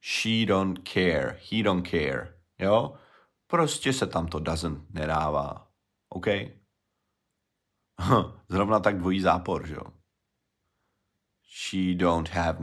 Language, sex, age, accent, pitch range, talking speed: Czech, male, 30-49, native, 85-100 Hz, 110 wpm